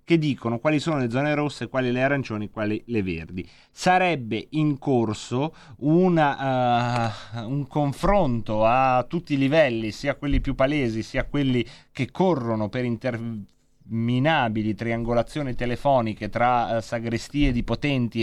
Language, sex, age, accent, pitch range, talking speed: Italian, male, 30-49, native, 115-140 Hz, 125 wpm